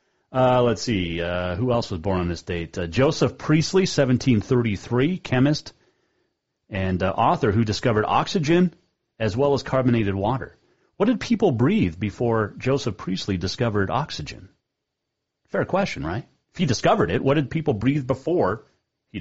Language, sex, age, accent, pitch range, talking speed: English, male, 40-59, American, 95-140 Hz, 155 wpm